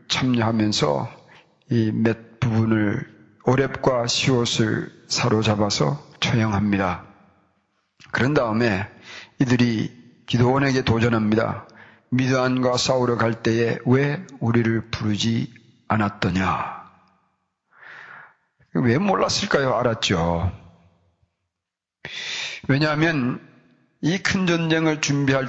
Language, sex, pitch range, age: Korean, male, 110-140 Hz, 40-59